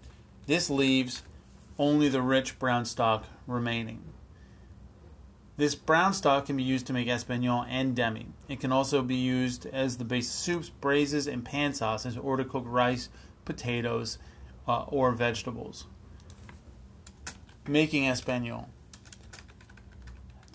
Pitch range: 120-140 Hz